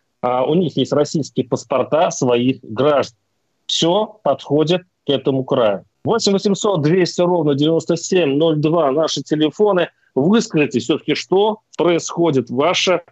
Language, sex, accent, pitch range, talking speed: Russian, male, native, 130-175 Hz, 115 wpm